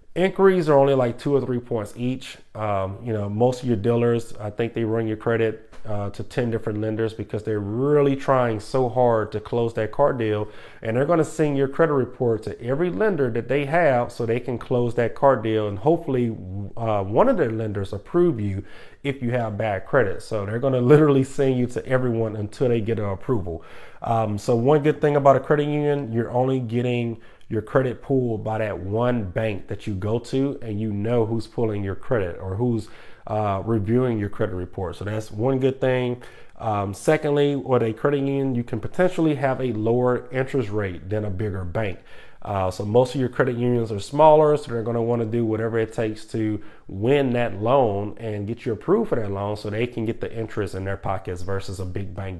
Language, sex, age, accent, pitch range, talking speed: English, male, 30-49, American, 105-130 Hz, 220 wpm